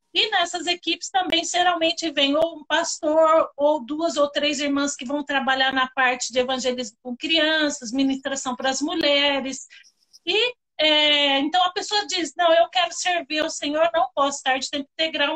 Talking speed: 175 wpm